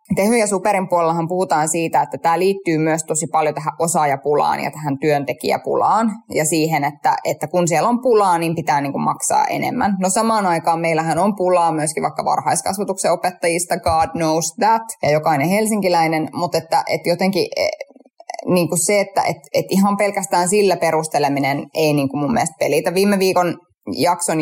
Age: 20-39